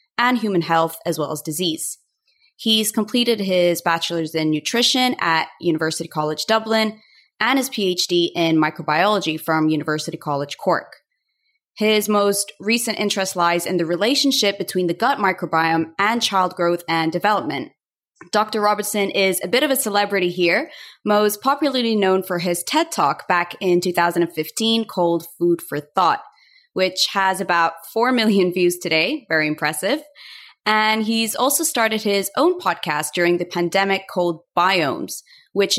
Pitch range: 165-220 Hz